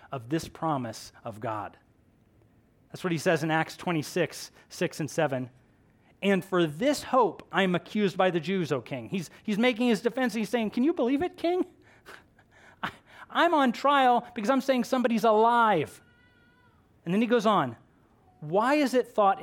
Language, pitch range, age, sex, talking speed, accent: English, 160-240 Hz, 30-49, male, 175 wpm, American